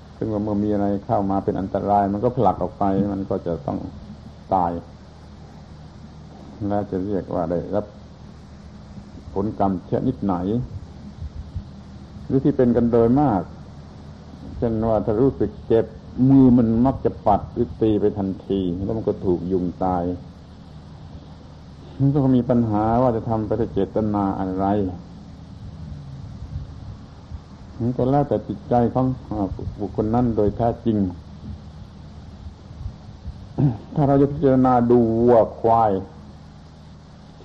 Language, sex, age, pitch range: Thai, male, 60-79, 85-115 Hz